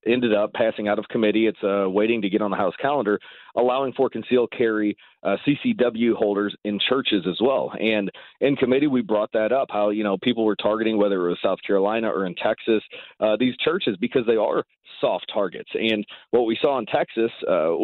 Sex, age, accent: male, 40-59, American